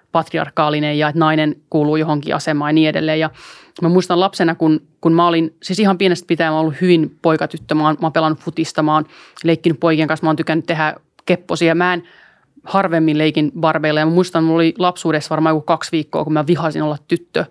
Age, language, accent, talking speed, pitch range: 30-49, Finnish, native, 205 wpm, 155-175 Hz